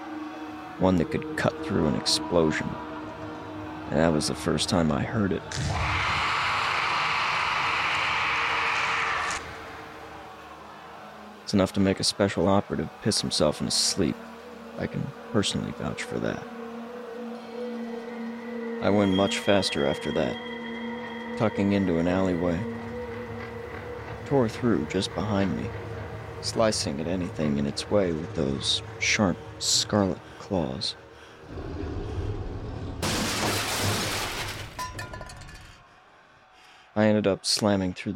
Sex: male